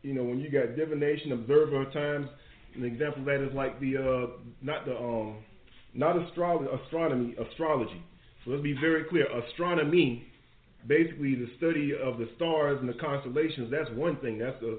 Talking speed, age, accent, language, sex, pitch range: 180 wpm, 40-59, American, English, male, 120-145 Hz